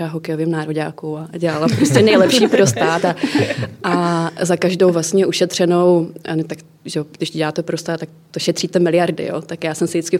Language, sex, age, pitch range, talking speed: Czech, female, 20-39, 160-175 Hz, 185 wpm